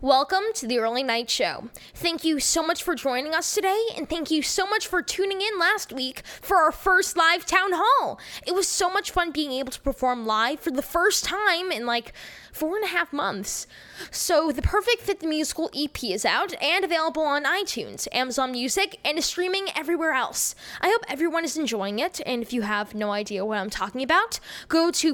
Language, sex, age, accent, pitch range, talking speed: English, female, 10-29, American, 250-355 Hz, 210 wpm